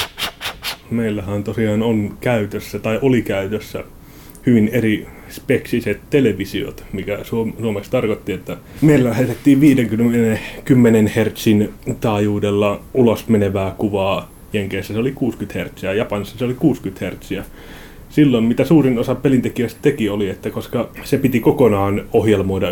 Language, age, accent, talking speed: Finnish, 30-49, native, 120 wpm